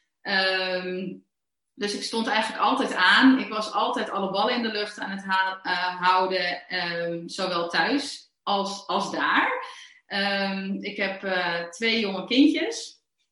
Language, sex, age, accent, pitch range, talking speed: Dutch, female, 30-49, Dutch, 185-230 Hz, 130 wpm